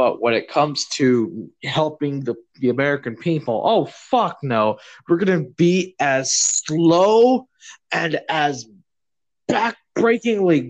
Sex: male